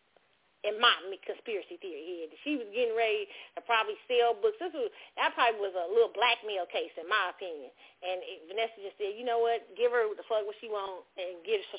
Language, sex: English, female